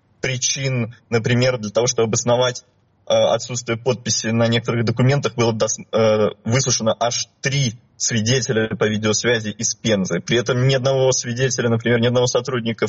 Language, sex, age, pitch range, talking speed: Russian, male, 20-39, 110-125 Hz, 145 wpm